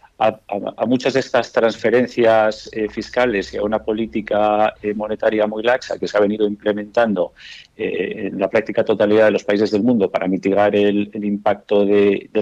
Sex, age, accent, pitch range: male, 50-69, Spanish, 105-120 Hz